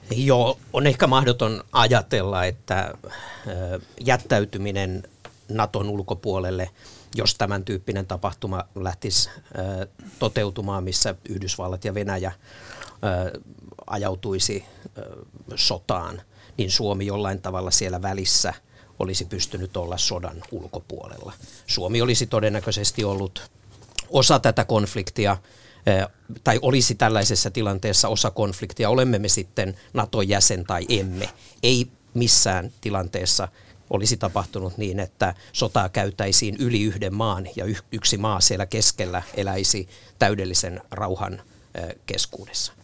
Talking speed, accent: 100 wpm, native